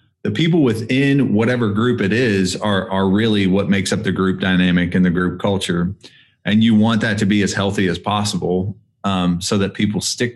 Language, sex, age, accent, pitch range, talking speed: English, male, 30-49, American, 95-110 Hz, 205 wpm